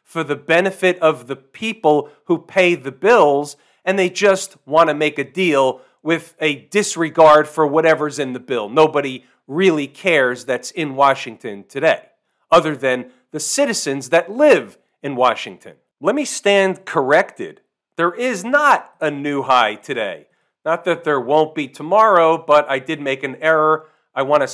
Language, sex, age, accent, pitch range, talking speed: English, male, 40-59, American, 145-180 Hz, 165 wpm